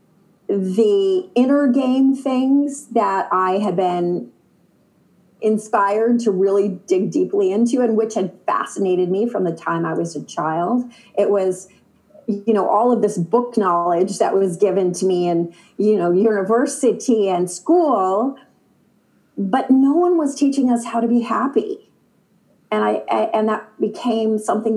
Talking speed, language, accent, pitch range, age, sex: 155 wpm, English, American, 190-240 Hz, 30-49, female